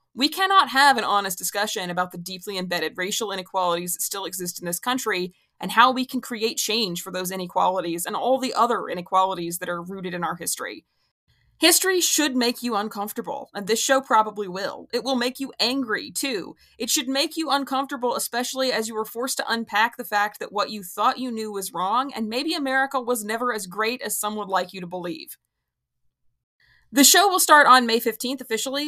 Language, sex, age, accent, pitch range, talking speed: English, female, 20-39, American, 190-250 Hz, 205 wpm